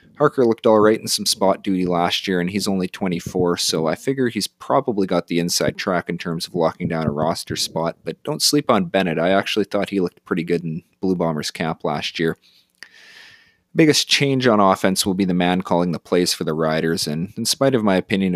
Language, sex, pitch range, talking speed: English, male, 85-105 Hz, 220 wpm